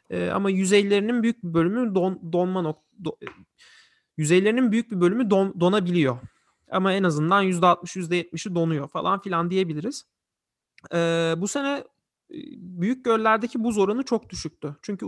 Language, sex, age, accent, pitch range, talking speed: Turkish, male, 40-59, native, 160-205 Hz, 150 wpm